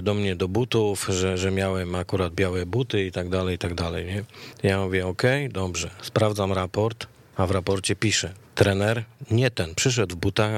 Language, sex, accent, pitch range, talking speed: Polish, male, native, 100-120 Hz, 185 wpm